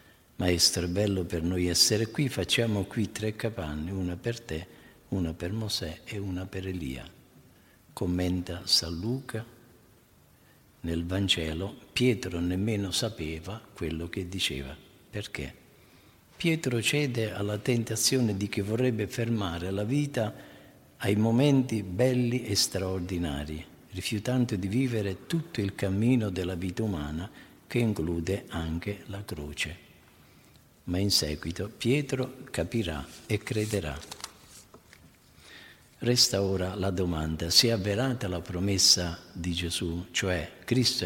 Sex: male